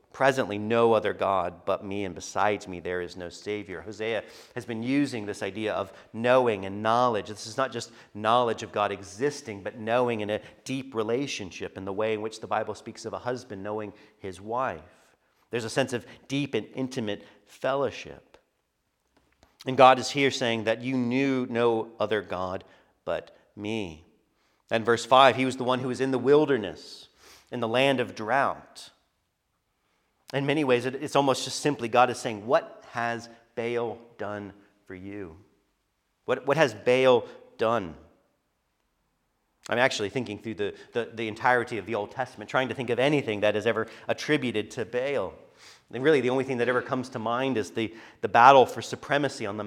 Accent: American